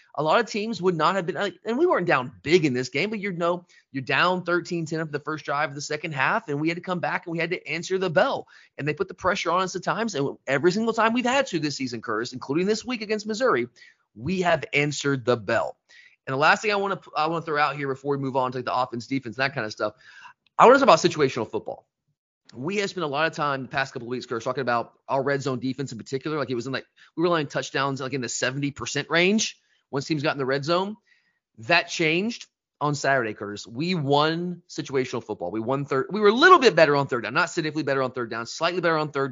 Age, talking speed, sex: 30-49, 275 wpm, male